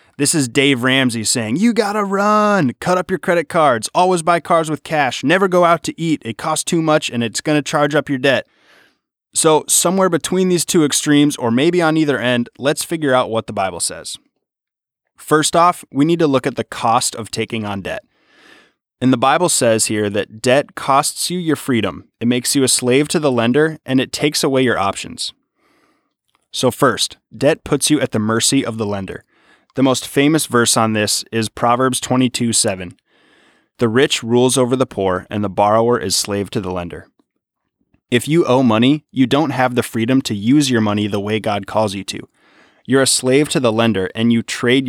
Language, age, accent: English, 20-39, American